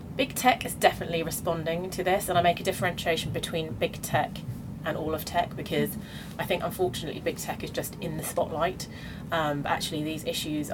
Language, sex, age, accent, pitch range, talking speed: English, female, 30-49, British, 160-205 Hz, 190 wpm